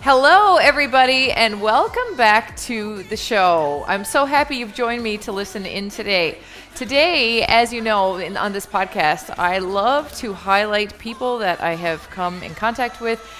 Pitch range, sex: 180-235 Hz, female